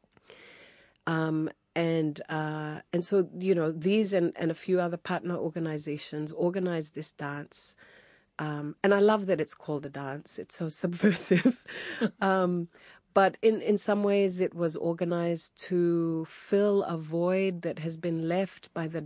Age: 40-59